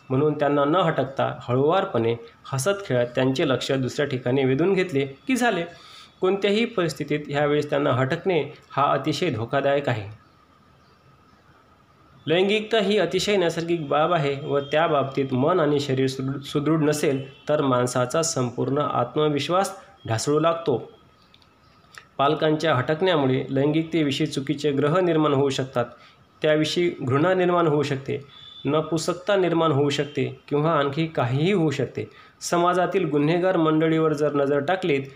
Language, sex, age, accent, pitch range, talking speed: Marathi, male, 30-49, native, 135-165 Hz, 85 wpm